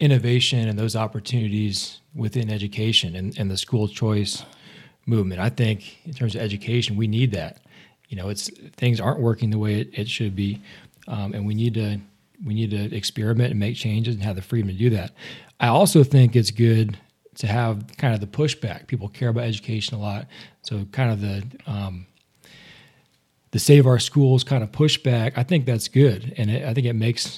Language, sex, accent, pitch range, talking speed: English, male, American, 105-125 Hz, 195 wpm